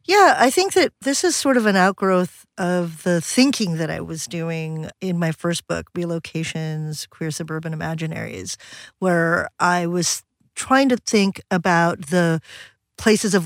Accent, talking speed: American, 155 wpm